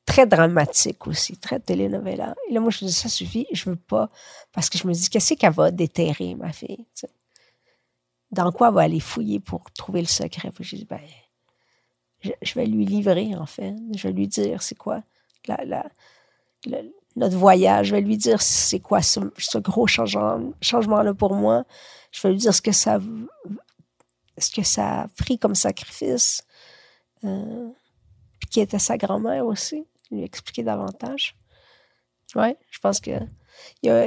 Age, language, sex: 50-69, French, female